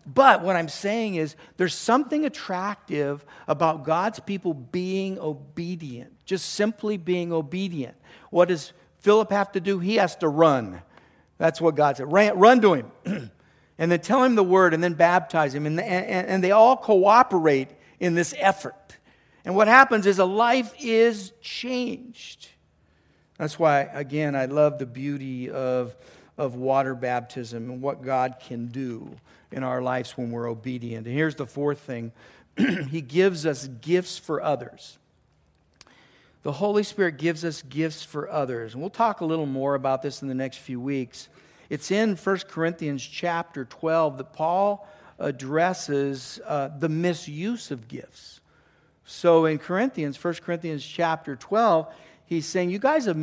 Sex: male